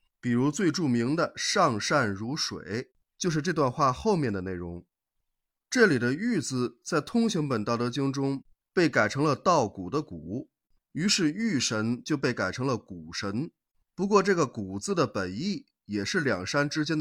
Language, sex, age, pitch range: Chinese, male, 20-39, 110-170 Hz